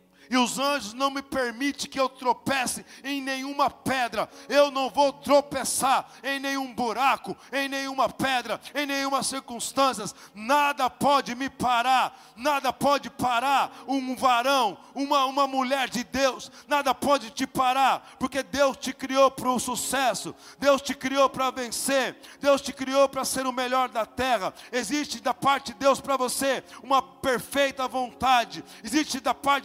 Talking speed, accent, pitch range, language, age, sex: 155 wpm, Brazilian, 255-275 Hz, Portuguese, 50-69, male